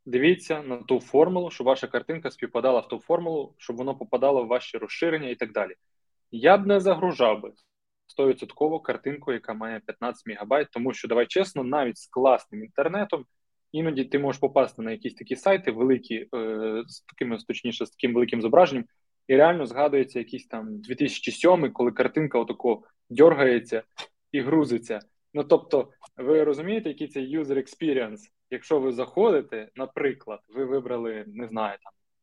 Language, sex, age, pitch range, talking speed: Ukrainian, male, 20-39, 120-155 Hz, 155 wpm